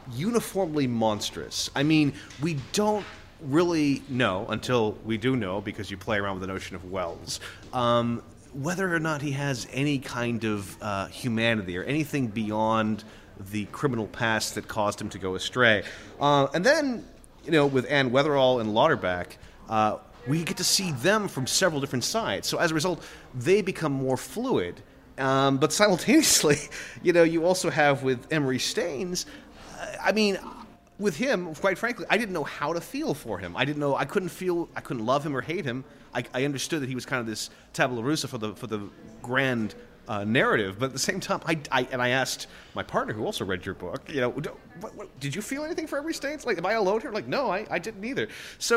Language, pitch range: English, 115-175 Hz